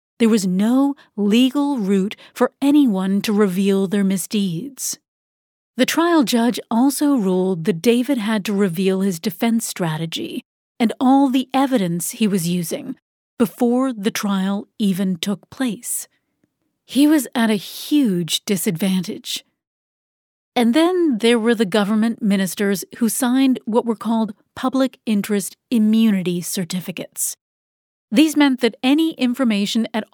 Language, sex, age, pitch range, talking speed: English, female, 40-59, 205-255 Hz, 130 wpm